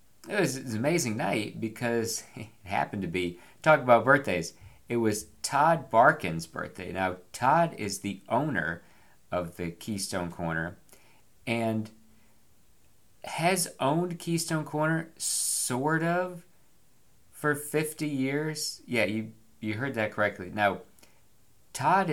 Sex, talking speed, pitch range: male, 125 wpm, 90-130 Hz